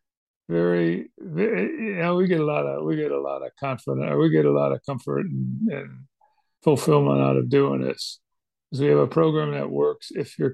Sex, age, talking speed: male, 60-79, 205 wpm